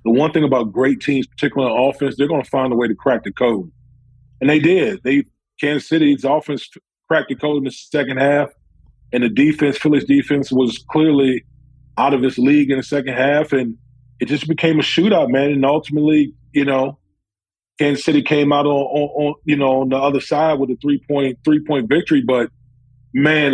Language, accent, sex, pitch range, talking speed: English, American, male, 130-160 Hz, 205 wpm